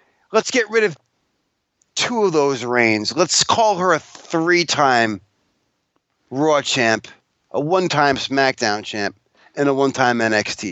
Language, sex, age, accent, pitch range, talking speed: English, male, 30-49, American, 140-190 Hz, 130 wpm